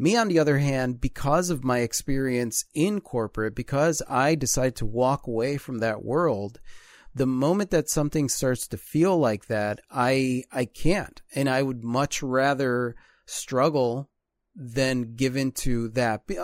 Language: English